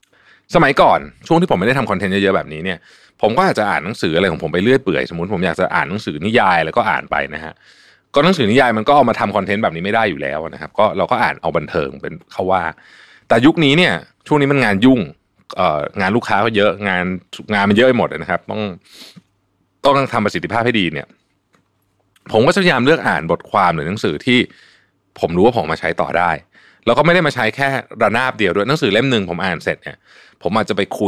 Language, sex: Thai, male